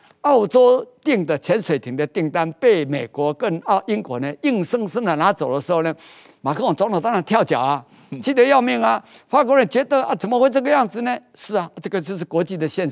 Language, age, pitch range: Chinese, 50-69, 155-220 Hz